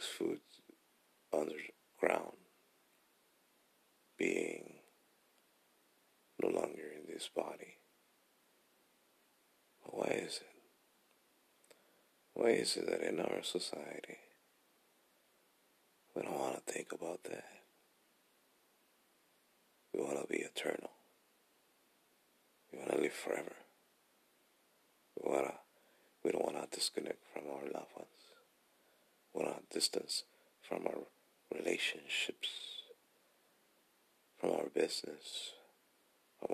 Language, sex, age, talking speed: English, male, 50-69, 90 wpm